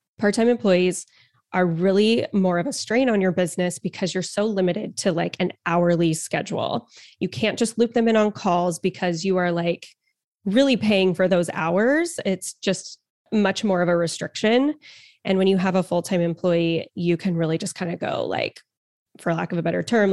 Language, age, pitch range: English, 20-39, 175-200 Hz